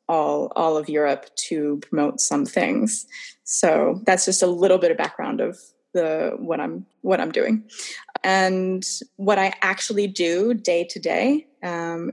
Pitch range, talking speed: 170-210 Hz, 160 wpm